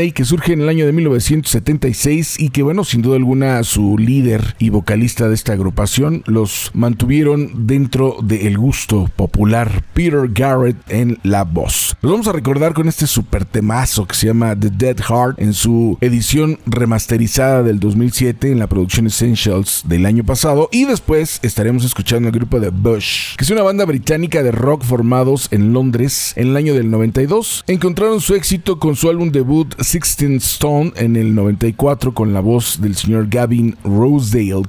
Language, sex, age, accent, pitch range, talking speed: Spanish, male, 40-59, Mexican, 110-145 Hz, 175 wpm